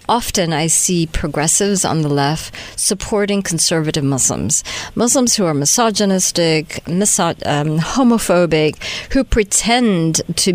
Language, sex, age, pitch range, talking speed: English, female, 50-69, 180-255 Hz, 115 wpm